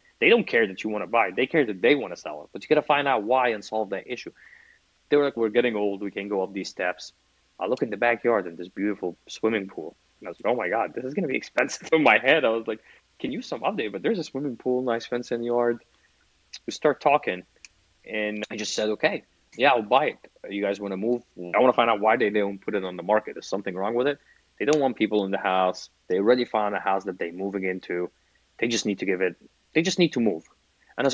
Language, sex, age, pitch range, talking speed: English, male, 20-39, 95-120 Hz, 285 wpm